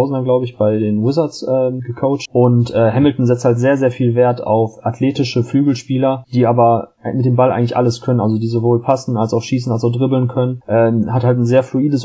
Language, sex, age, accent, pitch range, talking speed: German, male, 30-49, German, 120-135 Hz, 220 wpm